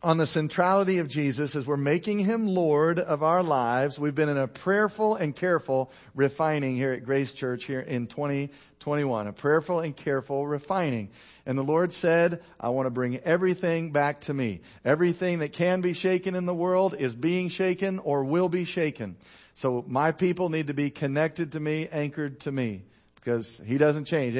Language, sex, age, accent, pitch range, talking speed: English, male, 50-69, American, 125-170 Hz, 185 wpm